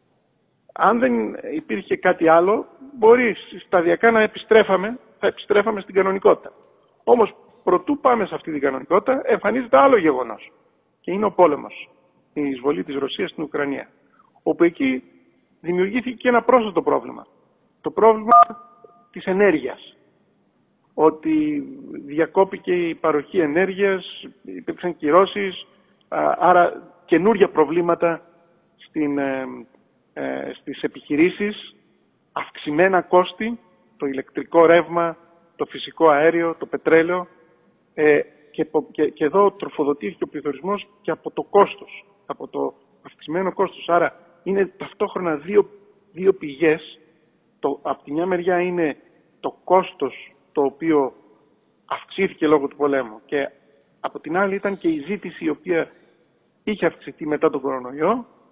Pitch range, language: 155-205 Hz, Greek